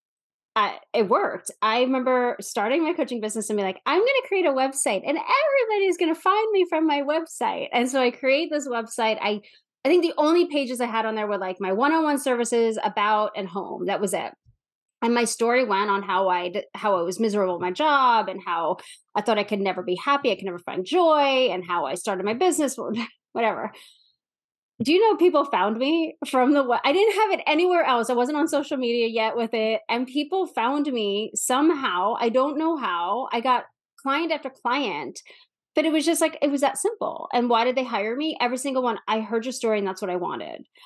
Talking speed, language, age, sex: 225 wpm, English, 20-39, female